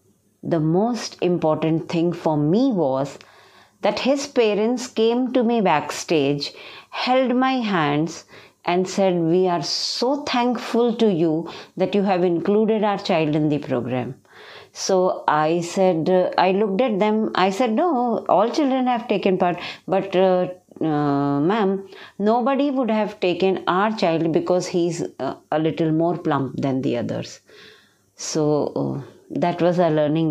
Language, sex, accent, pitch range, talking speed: English, female, Indian, 165-220 Hz, 150 wpm